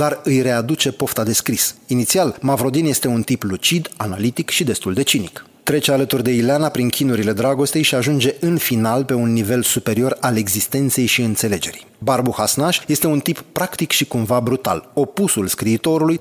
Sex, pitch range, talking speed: male, 120-145 Hz, 170 wpm